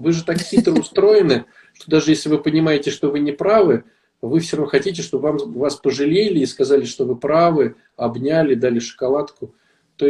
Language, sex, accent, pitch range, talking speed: Russian, male, native, 135-180 Hz, 180 wpm